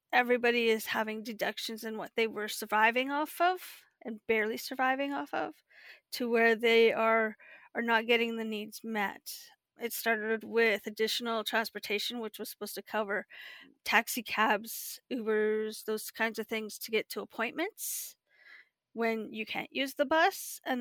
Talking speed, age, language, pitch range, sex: 155 wpm, 40-59, English, 220-255 Hz, female